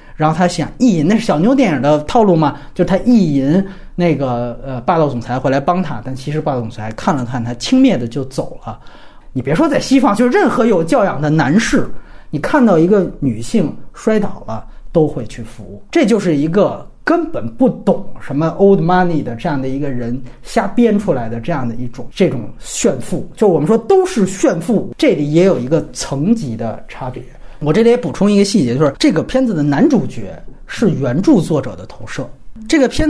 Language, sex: Chinese, male